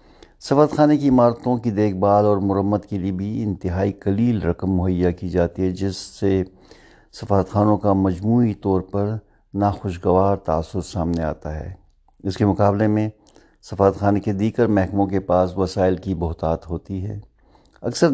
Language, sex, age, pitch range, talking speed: Urdu, male, 60-79, 90-100 Hz, 160 wpm